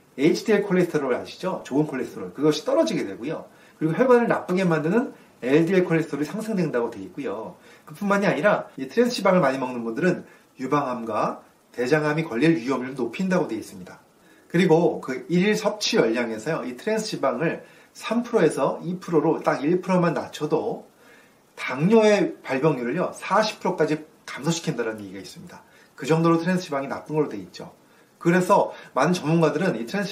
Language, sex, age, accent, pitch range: Korean, male, 30-49, native, 140-205 Hz